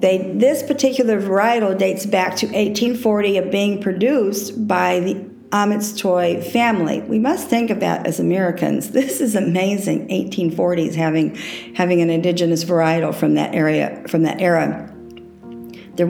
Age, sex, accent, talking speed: 50-69, female, American, 145 wpm